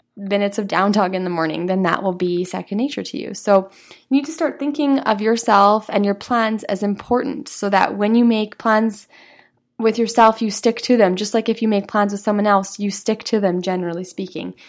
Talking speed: 225 wpm